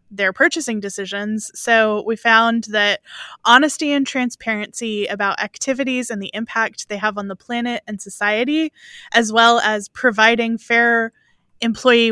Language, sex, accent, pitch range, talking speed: English, female, American, 210-245 Hz, 140 wpm